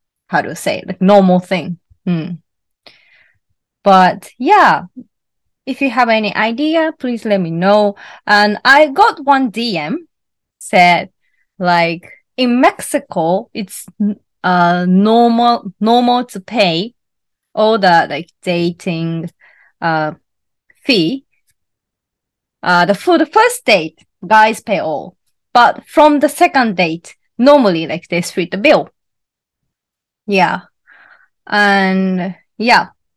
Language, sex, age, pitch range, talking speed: English, female, 20-39, 180-245 Hz, 115 wpm